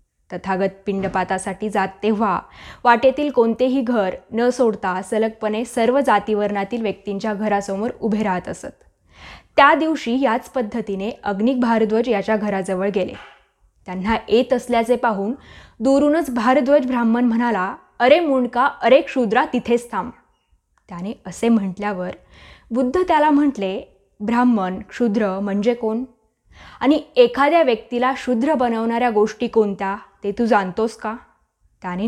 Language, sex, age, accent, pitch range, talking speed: Marathi, female, 20-39, native, 195-250 Hz, 115 wpm